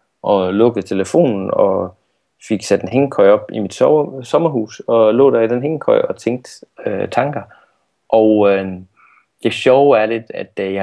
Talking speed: 175 wpm